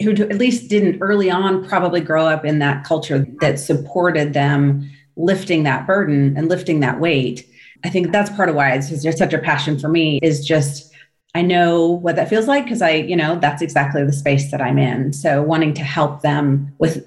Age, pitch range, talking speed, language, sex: 30-49, 155-200 Hz, 205 wpm, English, female